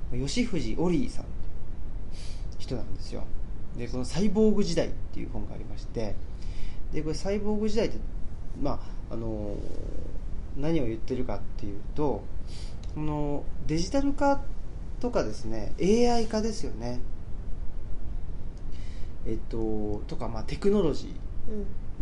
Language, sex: Japanese, male